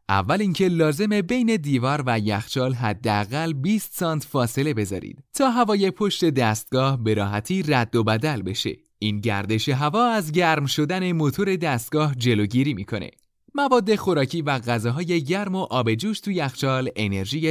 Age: 30-49